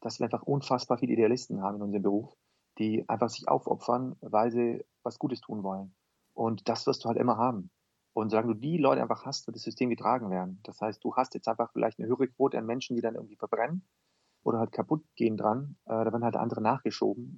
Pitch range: 115-135 Hz